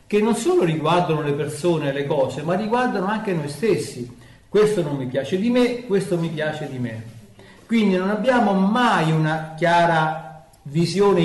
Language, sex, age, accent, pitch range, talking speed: Italian, male, 50-69, native, 135-195 Hz, 170 wpm